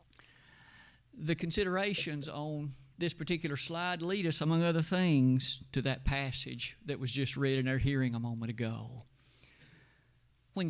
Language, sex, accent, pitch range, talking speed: English, male, American, 135-195 Hz, 140 wpm